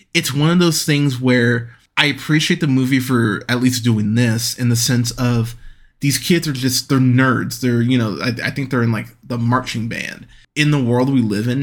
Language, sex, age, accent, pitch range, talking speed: English, male, 20-39, American, 120-145 Hz, 220 wpm